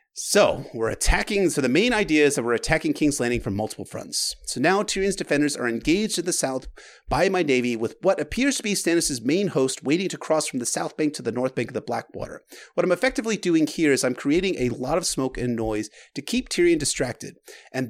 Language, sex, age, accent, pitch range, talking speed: English, male, 30-49, American, 120-175 Hz, 230 wpm